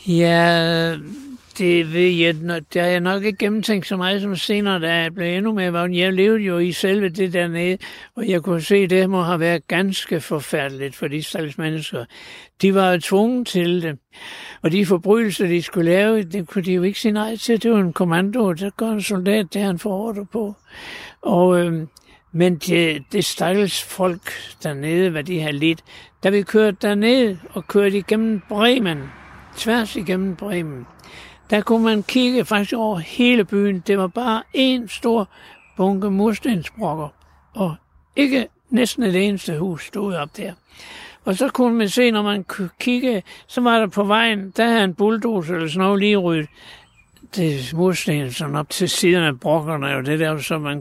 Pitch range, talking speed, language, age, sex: 170-215 Hz, 180 wpm, Danish, 60-79, male